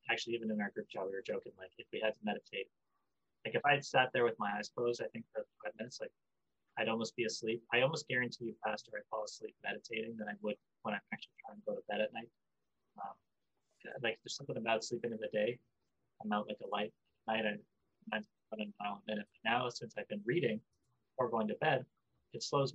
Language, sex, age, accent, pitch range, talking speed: English, male, 30-49, American, 105-155 Hz, 220 wpm